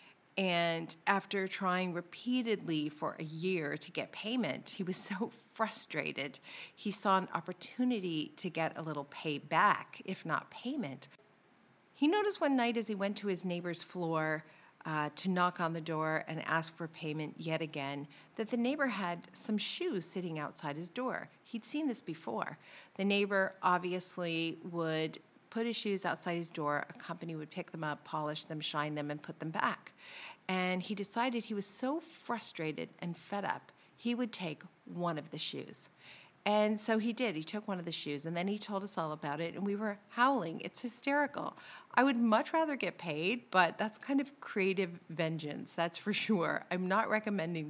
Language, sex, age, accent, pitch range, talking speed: English, female, 40-59, American, 160-215 Hz, 185 wpm